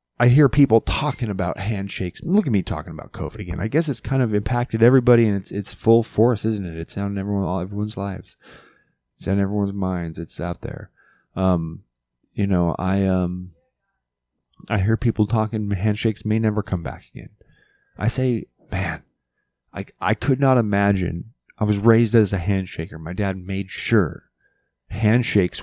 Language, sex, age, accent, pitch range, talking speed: English, male, 20-39, American, 85-115 Hz, 175 wpm